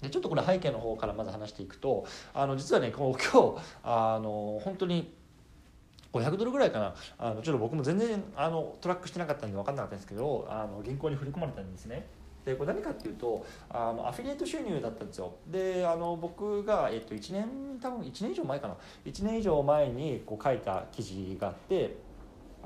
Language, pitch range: Japanese, 105-175 Hz